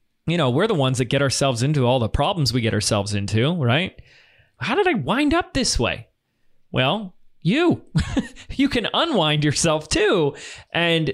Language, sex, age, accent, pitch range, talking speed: English, male, 20-39, American, 120-180 Hz, 170 wpm